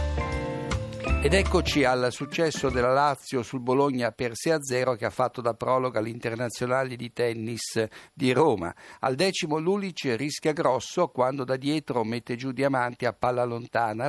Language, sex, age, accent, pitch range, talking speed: Italian, male, 60-79, native, 115-140 Hz, 155 wpm